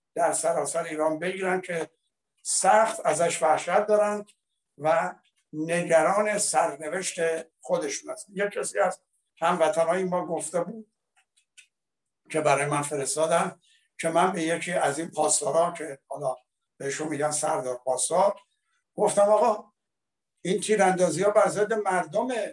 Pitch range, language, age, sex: 160-210 Hz, Persian, 60-79, male